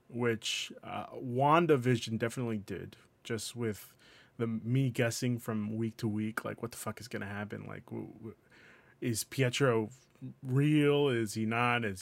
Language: English